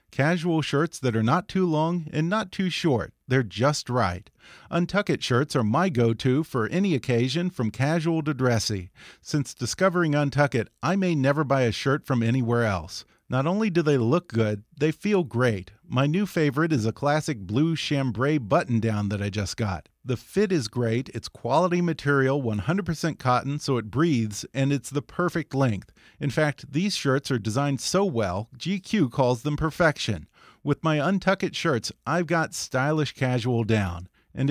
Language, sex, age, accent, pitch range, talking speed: English, male, 40-59, American, 120-165 Hz, 170 wpm